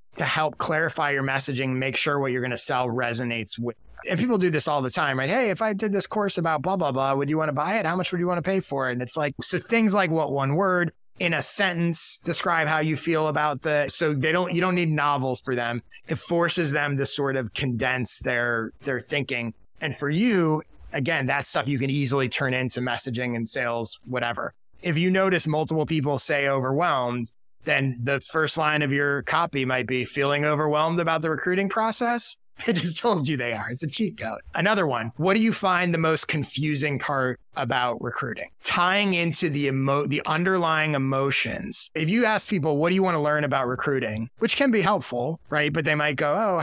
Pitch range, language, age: 130-170 Hz, English, 30-49